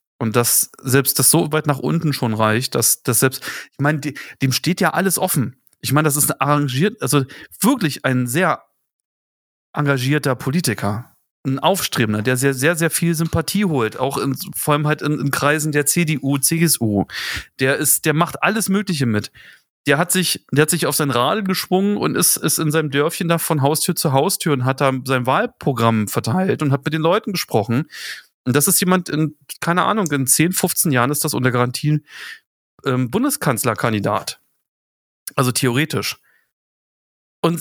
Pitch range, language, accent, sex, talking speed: 130-175 Hz, German, German, male, 180 wpm